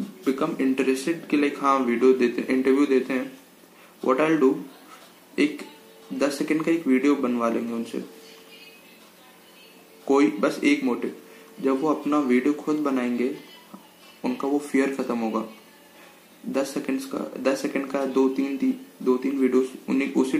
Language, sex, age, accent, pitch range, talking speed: Hindi, male, 20-39, native, 125-150 Hz, 145 wpm